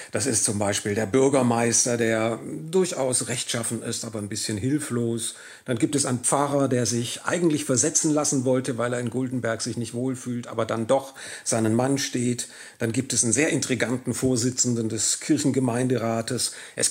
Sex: male